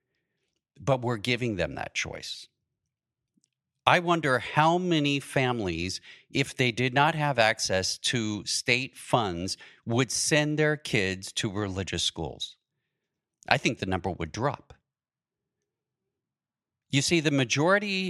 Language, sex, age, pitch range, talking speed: English, male, 40-59, 105-150 Hz, 125 wpm